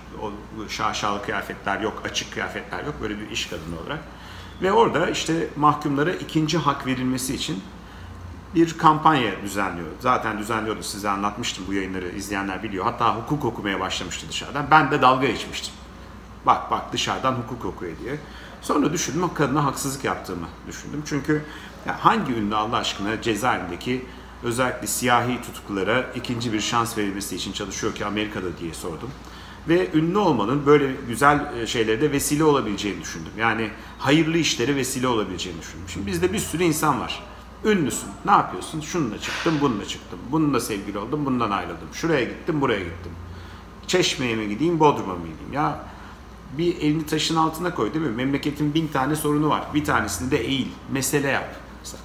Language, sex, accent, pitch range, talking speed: Turkish, male, native, 100-145 Hz, 155 wpm